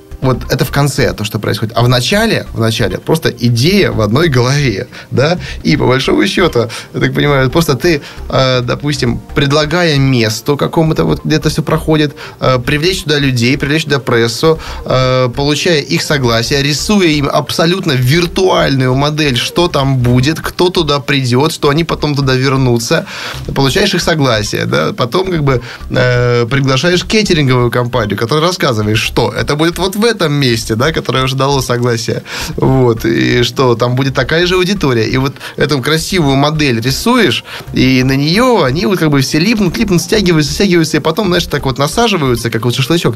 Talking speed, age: 165 wpm, 20-39